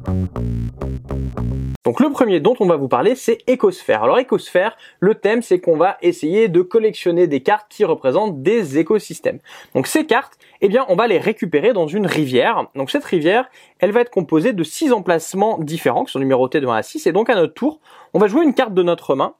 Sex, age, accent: male, 20-39, French